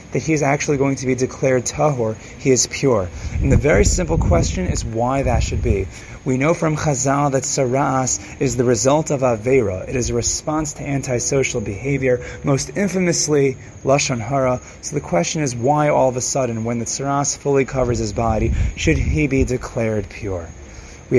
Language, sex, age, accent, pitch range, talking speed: English, male, 30-49, American, 120-150 Hz, 185 wpm